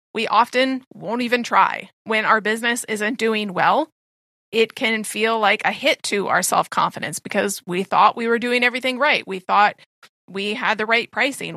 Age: 30-49